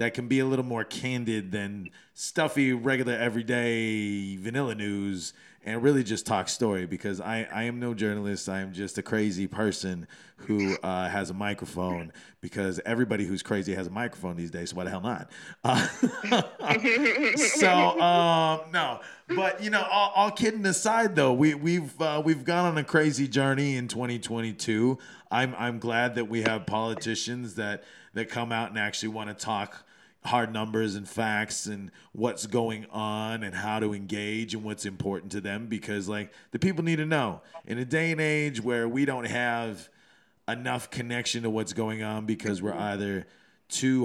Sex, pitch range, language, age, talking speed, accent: male, 100-125 Hz, English, 30-49, 175 wpm, American